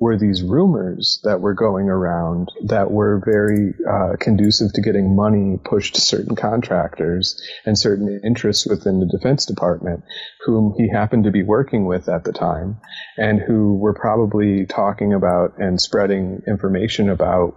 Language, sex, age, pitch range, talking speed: English, male, 30-49, 95-105 Hz, 155 wpm